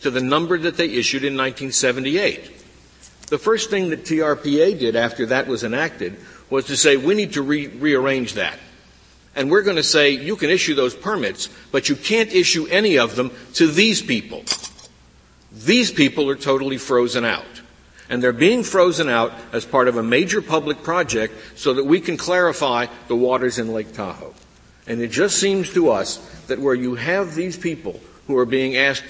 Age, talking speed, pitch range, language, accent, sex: 60-79, 185 wpm, 115-160 Hz, English, American, male